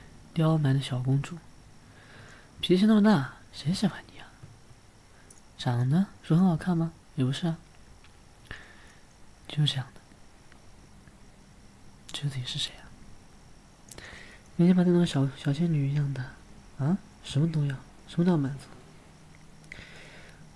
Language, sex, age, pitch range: Chinese, male, 40-59, 115-160 Hz